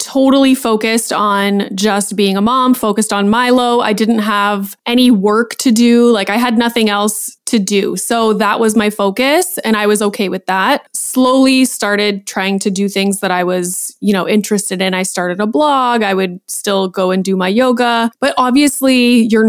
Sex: female